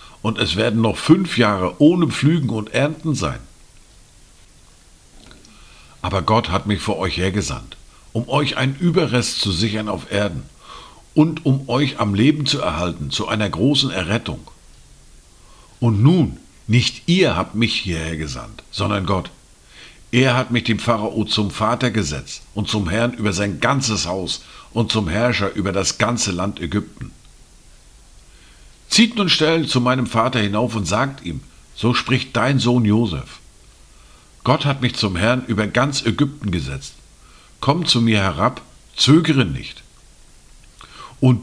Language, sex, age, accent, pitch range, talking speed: German, male, 50-69, German, 100-130 Hz, 145 wpm